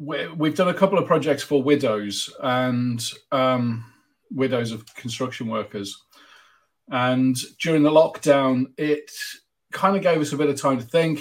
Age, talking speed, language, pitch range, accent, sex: 40-59, 155 wpm, English, 115-135 Hz, British, male